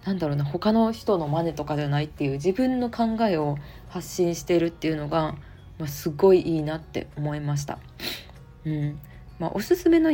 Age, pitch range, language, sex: 20-39, 150-210 Hz, Japanese, female